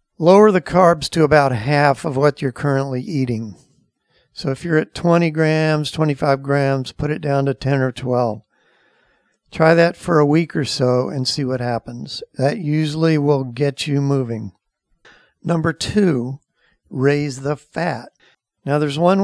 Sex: male